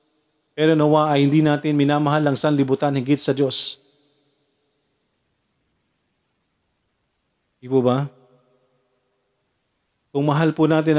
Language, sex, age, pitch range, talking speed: Filipino, male, 40-59, 135-150 Hz, 95 wpm